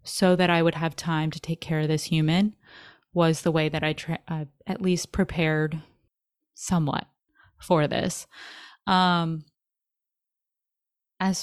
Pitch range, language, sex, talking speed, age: 160-185 Hz, English, female, 135 wpm, 20-39